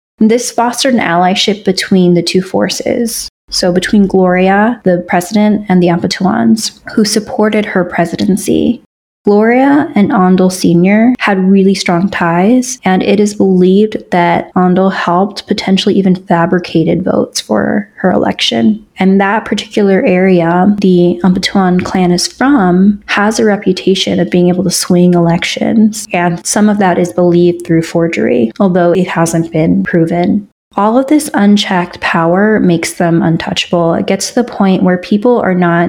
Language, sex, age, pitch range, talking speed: English, female, 20-39, 175-215 Hz, 150 wpm